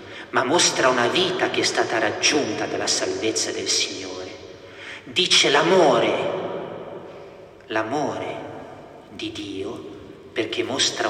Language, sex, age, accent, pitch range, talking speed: Italian, male, 50-69, native, 350-380 Hz, 105 wpm